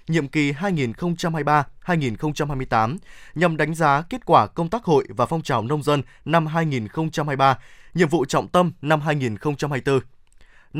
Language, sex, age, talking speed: Vietnamese, male, 20-39, 135 wpm